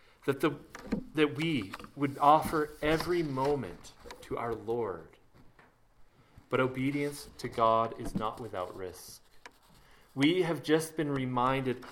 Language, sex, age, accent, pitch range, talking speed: English, male, 30-49, American, 125-170 Hz, 115 wpm